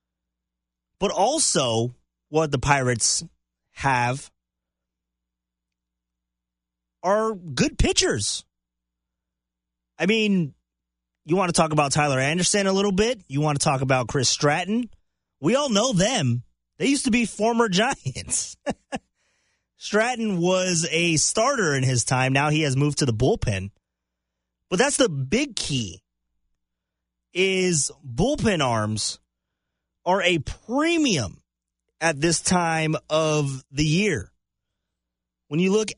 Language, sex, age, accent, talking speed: English, male, 30-49, American, 120 wpm